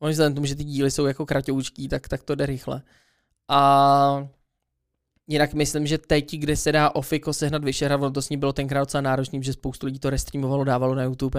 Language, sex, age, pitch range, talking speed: Czech, male, 20-39, 140-160 Hz, 205 wpm